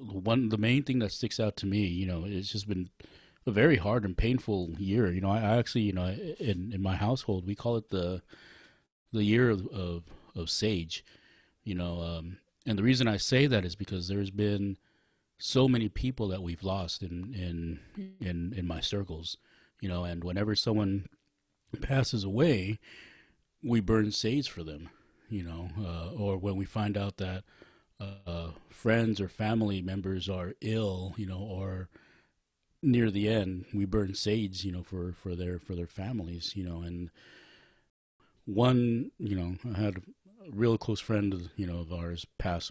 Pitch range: 90-110 Hz